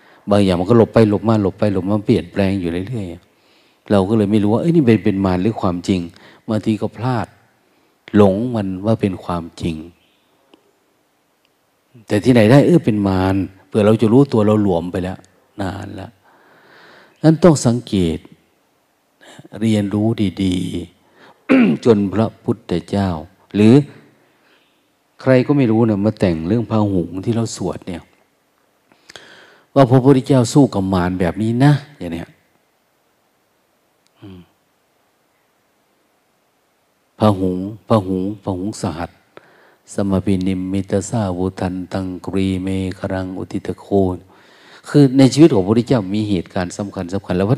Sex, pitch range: male, 95-115 Hz